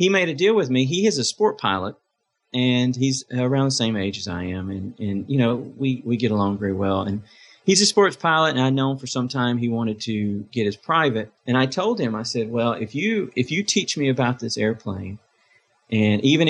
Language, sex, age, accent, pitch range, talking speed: English, male, 40-59, American, 105-125 Hz, 235 wpm